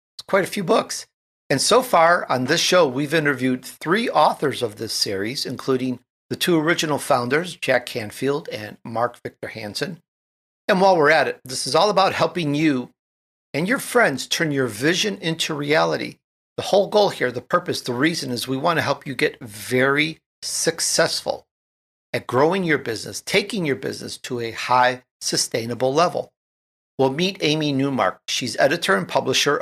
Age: 50-69